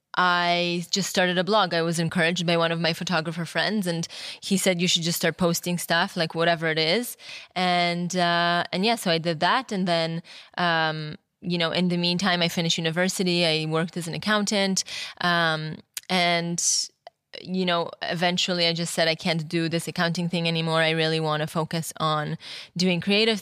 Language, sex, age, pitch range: English, female, 20-39, 165-180 Hz